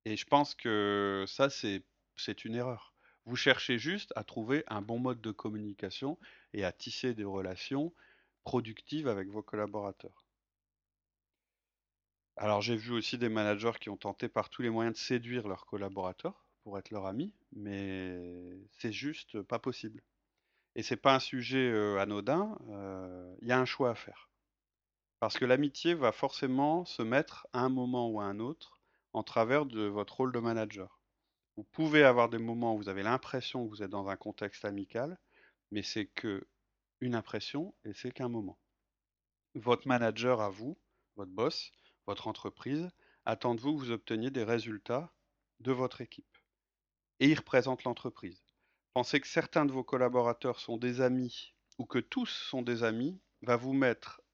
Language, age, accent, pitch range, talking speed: French, 30-49, French, 105-130 Hz, 170 wpm